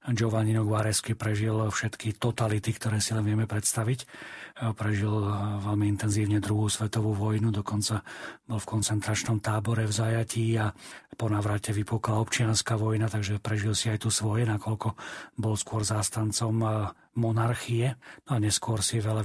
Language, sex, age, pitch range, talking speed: Slovak, male, 40-59, 110-120 Hz, 140 wpm